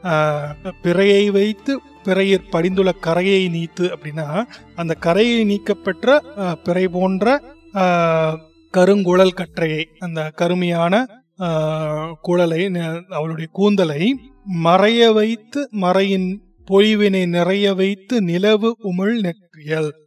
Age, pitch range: 30-49, 170-210 Hz